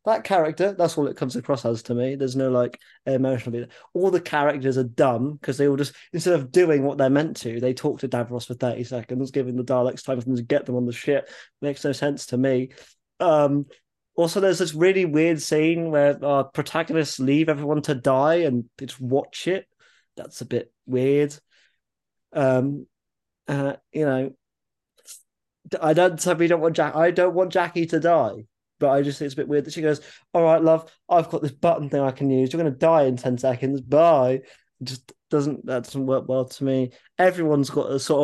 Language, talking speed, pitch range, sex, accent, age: English, 210 wpm, 130-165 Hz, male, British, 30-49